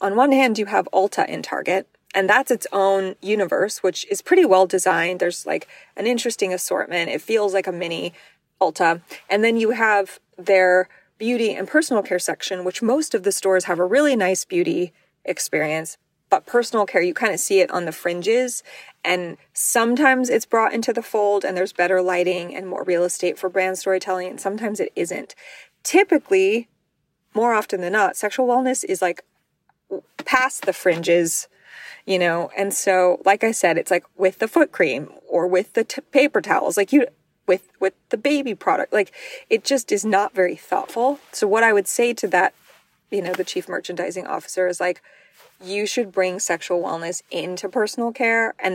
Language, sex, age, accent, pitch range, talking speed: English, female, 20-39, American, 180-240 Hz, 185 wpm